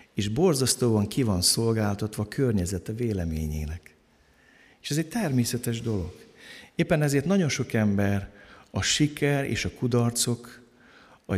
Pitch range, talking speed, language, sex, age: 100-130 Hz, 130 wpm, Hungarian, male, 60-79